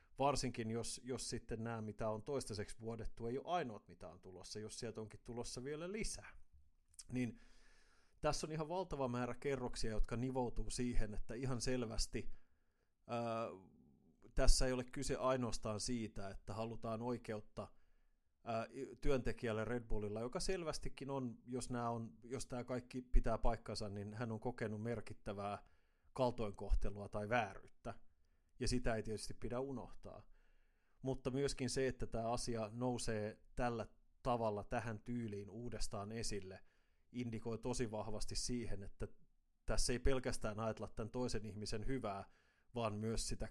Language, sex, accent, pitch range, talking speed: Finnish, male, native, 105-125 Hz, 140 wpm